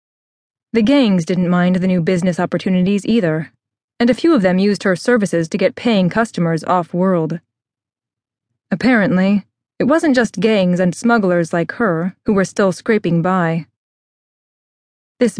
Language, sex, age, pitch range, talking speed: English, female, 20-39, 170-225 Hz, 145 wpm